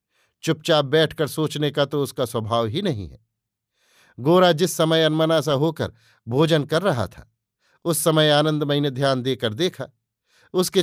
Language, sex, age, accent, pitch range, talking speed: Hindi, male, 50-69, native, 120-160 Hz, 155 wpm